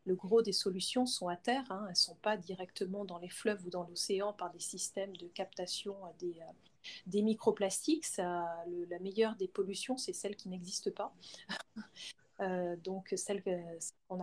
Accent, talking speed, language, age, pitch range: French, 180 wpm, French, 30-49, 190-225 Hz